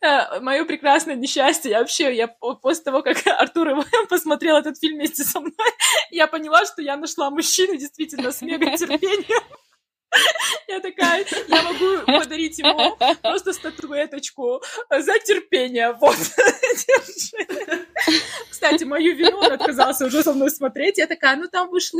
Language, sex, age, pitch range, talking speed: Russian, female, 20-39, 265-365 Hz, 135 wpm